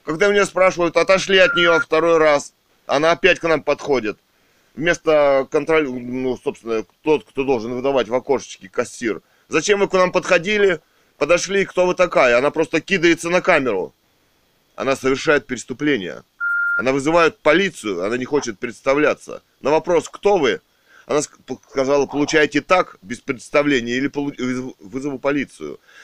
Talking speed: 145 wpm